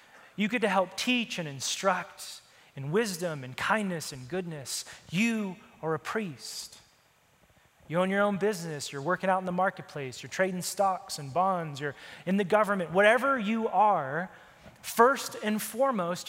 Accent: American